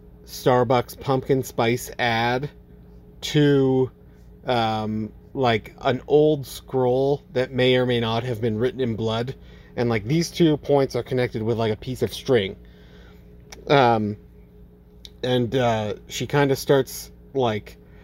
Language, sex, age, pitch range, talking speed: English, male, 40-59, 105-130 Hz, 135 wpm